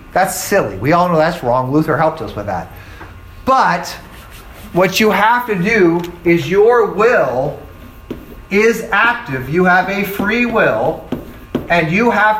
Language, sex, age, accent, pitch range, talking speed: English, male, 40-59, American, 135-200 Hz, 150 wpm